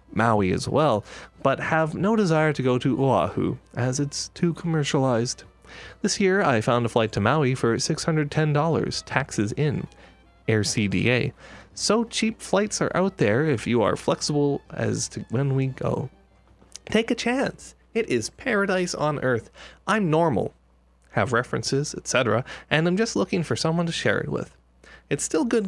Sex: male